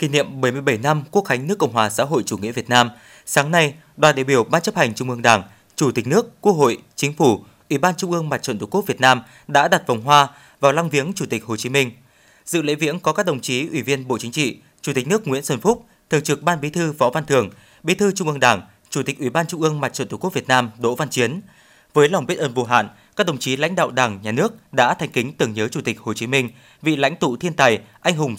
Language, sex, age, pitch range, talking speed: Vietnamese, male, 20-39, 125-165 Hz, 280 wpm